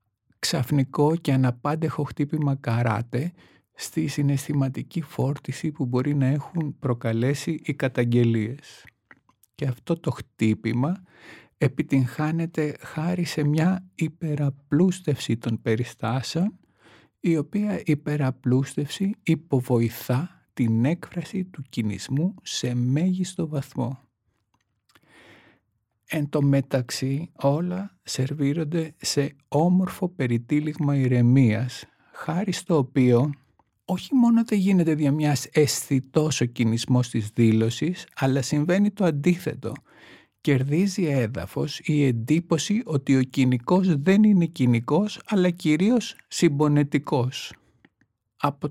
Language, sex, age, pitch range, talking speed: Greek, male, 50-69, 130-165 Hz, 95 wpm